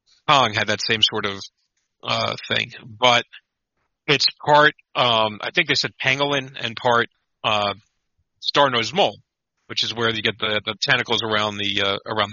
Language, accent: English, American